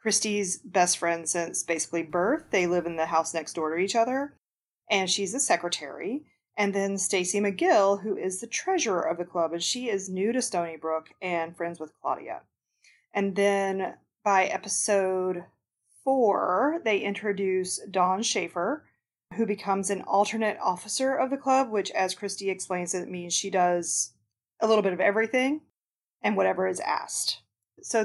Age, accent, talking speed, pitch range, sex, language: 30-49, American, 165 wpm, 175-220 Hz, female, English